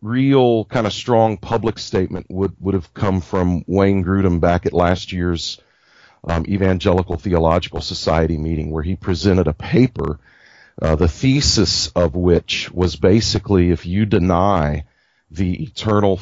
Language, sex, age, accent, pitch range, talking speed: English, male, 40-59, American, 85-105 Hz, 145 wpm